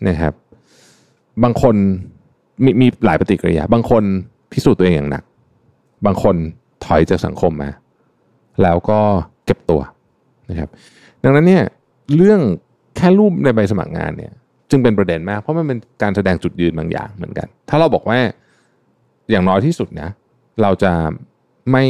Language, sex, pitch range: Thai, male, 90-125 Hz